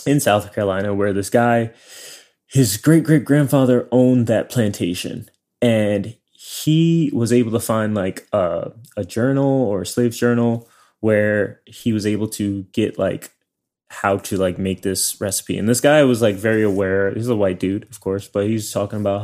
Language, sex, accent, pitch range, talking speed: English, male, American, 100-125 Hz, 170 wpm